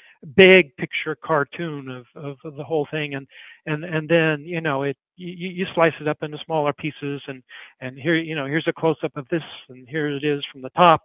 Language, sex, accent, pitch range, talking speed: English, male, American, 150-175 Hz, 230 wpm